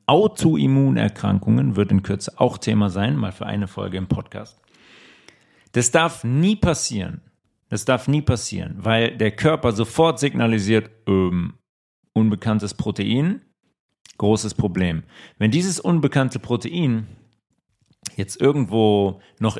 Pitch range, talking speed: 105-130 Hz, 115 wpm